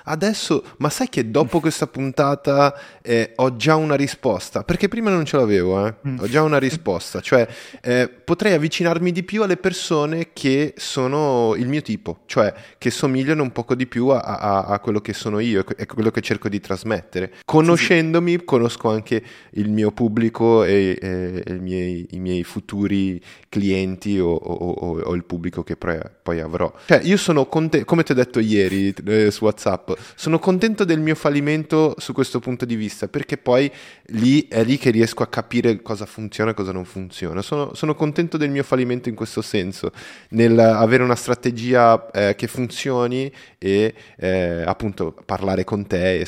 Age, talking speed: 20-39, 180 wpm